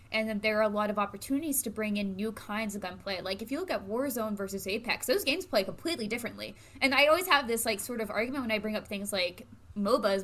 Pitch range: 205-245 Hz